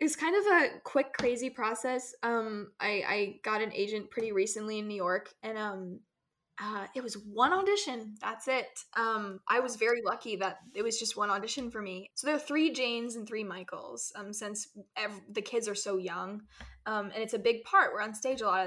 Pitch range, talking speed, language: 195-245 Hz, 220 wpm, English